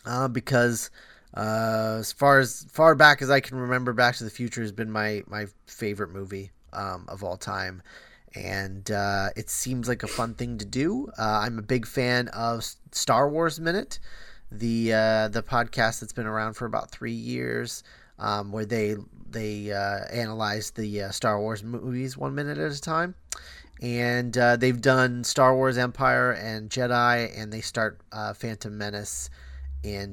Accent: American